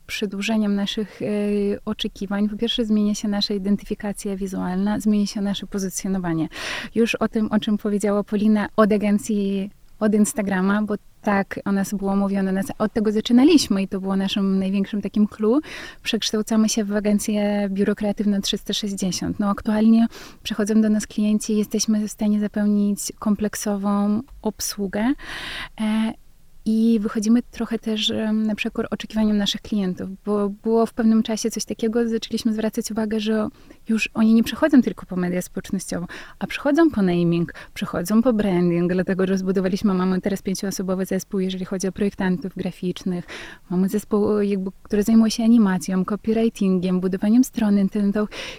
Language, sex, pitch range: Polish, female, 195-220 Hz